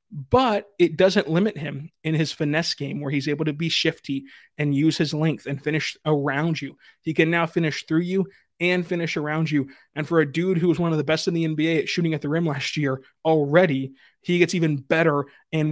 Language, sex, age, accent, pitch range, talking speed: English, male, 20-39, American, 150-175 Hz, 225 wpm